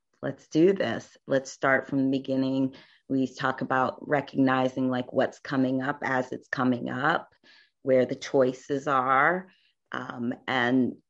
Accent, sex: American, female